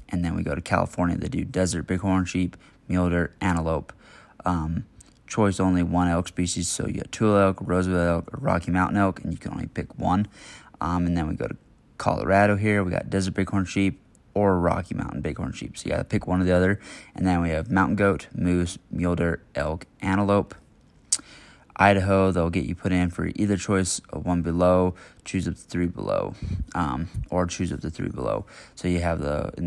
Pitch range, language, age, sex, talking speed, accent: 85-100 Hz, English, 20-39, male, 210 wpm, American